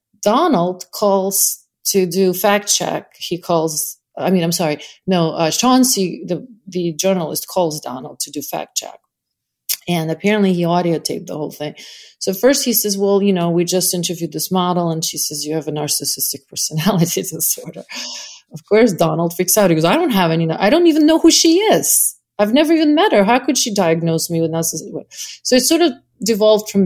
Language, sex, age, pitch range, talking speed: English, female, 40-59, 165-215 Hz, 195 wpm